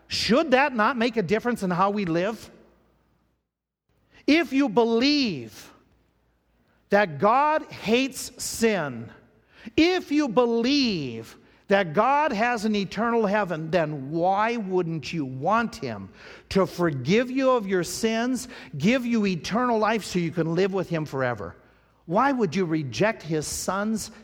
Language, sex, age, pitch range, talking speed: English, male, 50-69, 165-240 Hz, 135 wpm